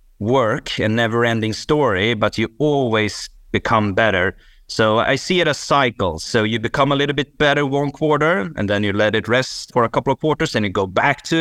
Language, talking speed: English, 210 wpm